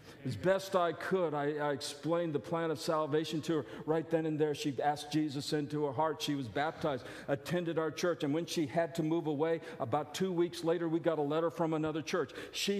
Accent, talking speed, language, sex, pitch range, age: American, 225 wpm, English, male, 155-210 Hz, 50-69